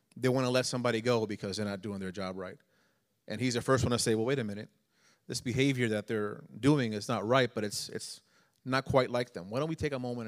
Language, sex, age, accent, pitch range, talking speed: English, male, 30-49, American, 110-135 Hz, 265 wpm